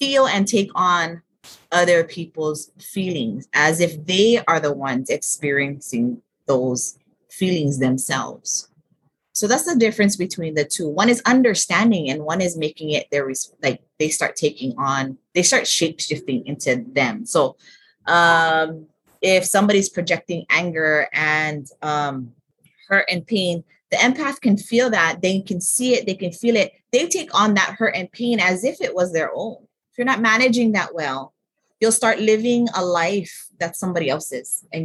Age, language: 30-49, English